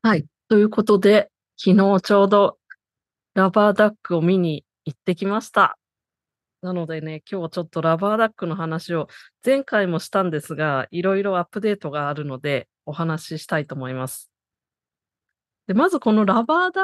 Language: Japanese